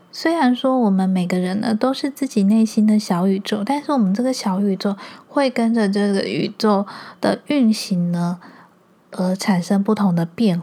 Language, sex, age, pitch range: Chinese, female, 20-39, 195-230 Hz